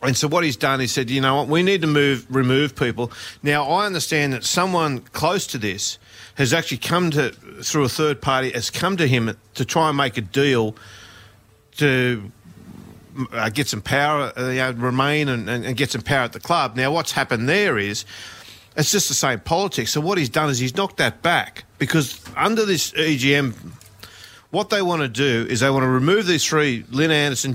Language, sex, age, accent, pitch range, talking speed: English, male, 40-59, Australian, 115-155 Hz, 210 wpm